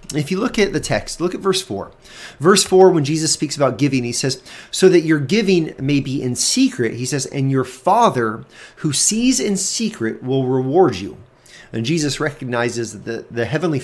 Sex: male